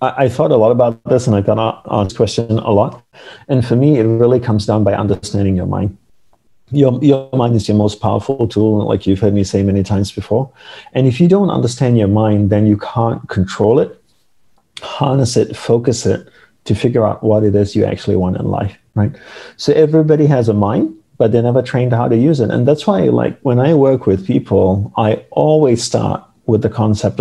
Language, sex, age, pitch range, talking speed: English, male, 40-59, 100-120 Hz, 210 wpm